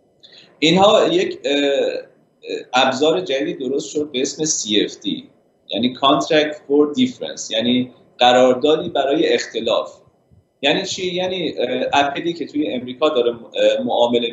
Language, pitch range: Persian, 135-180 Hz